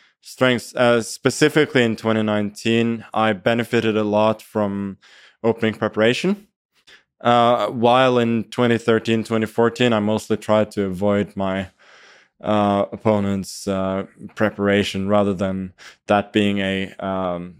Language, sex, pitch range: English, male, 100-115 Hz